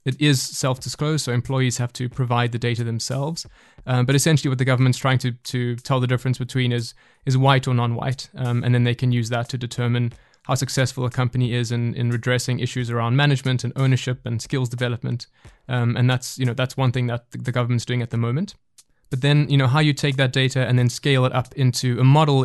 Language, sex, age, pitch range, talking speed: English, male, 20-39, 125-135 Hz, 230 wpm